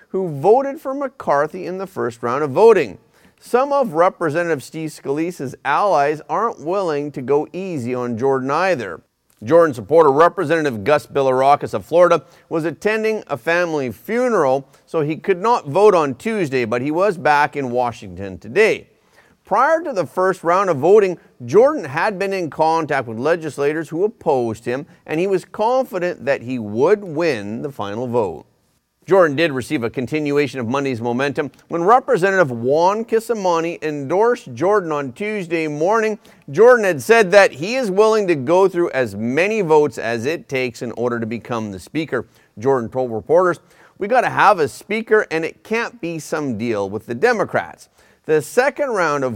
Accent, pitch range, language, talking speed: American, 135-195 Hz, English, 170 wpm